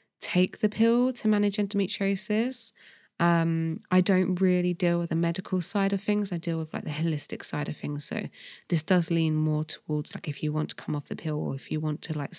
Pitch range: 150-185 Hz